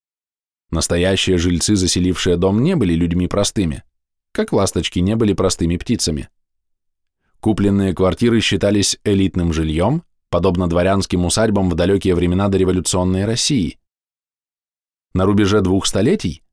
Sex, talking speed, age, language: male, 115 wpm, 20-39, Russian